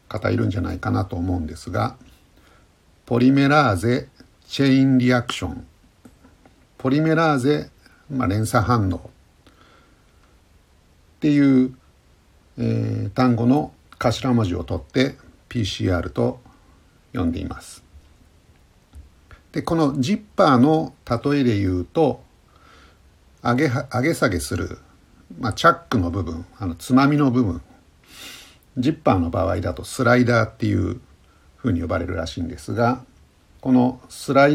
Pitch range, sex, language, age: 85-130 Hz, male, Japanese, 60-79